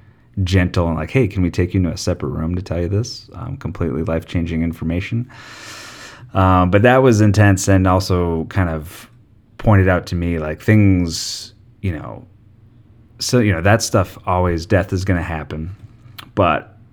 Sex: male